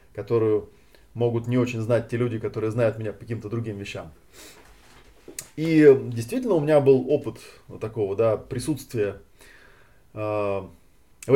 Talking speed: 125 wpm